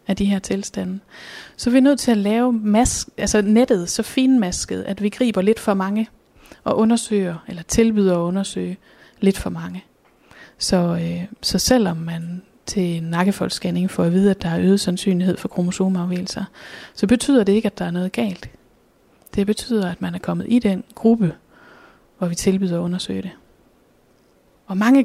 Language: Danish